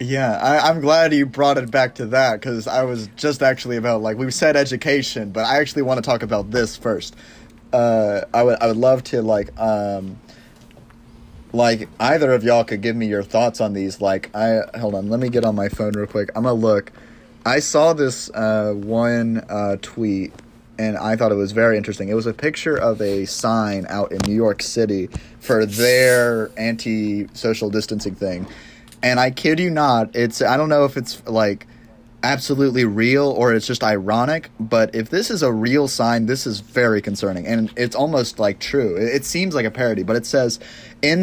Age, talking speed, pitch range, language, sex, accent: 30-49, 200 wpm, 110-135 Hz, English, male, American